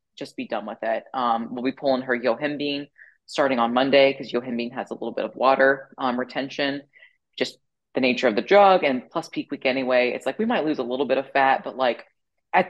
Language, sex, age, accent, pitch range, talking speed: English, female, 20-39, American, 130-155 Hz, 230 wpm